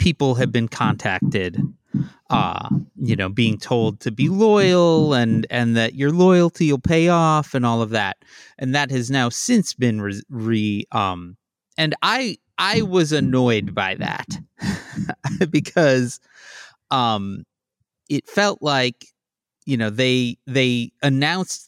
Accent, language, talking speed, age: American, English, 140 wpm, 30-49